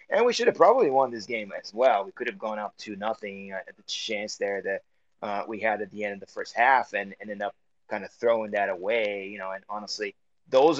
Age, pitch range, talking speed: 20-39, 105-135 Hz, 260 wpm